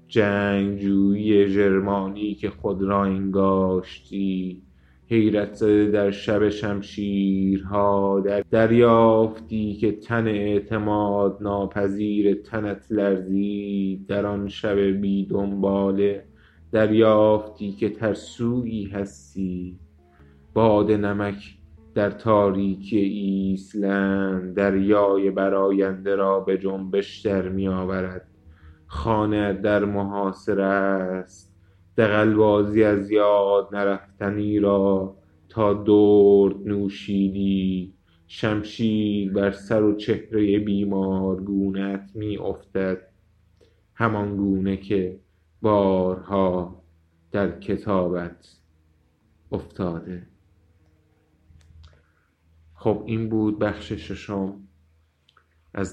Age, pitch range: 20-39, 95-105 Hz